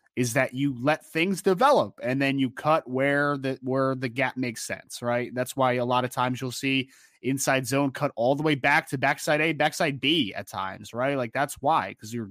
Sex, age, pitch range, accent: male, 20-39, 130-165 Hz, American